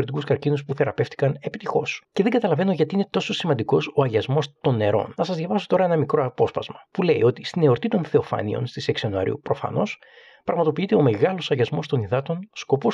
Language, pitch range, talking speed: Greek, 135-175 Hz, 185 wpm